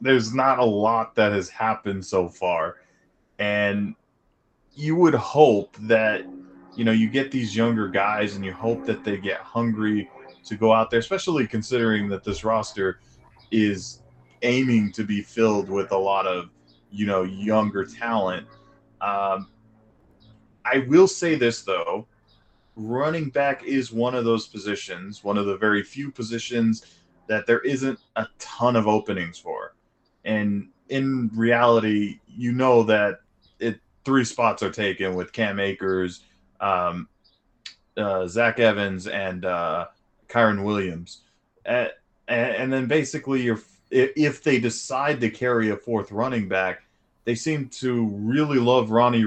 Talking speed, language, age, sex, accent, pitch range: 145 wpm, English, 20-39, male, American, 100-120 Hz